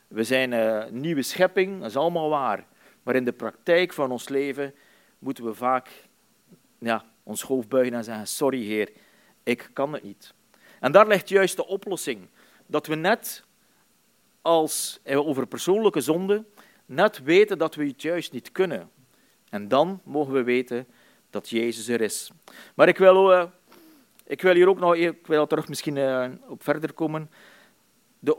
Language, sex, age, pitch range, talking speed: Dutch, male, 40-59, 130-175 Hz, 160 wpm